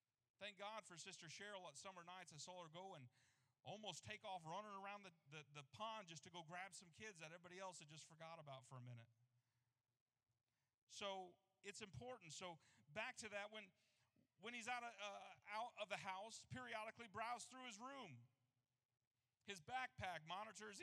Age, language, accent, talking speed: 40-59, English, American, 180 wpm